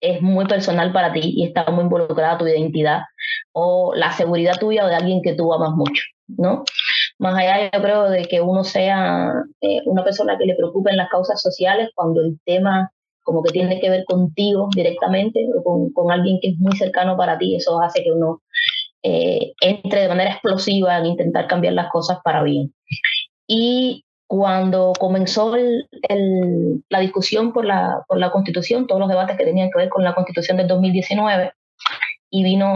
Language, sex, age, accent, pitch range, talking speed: Spanish, female, 20-39, American, 175-215 Hz, 185 wpm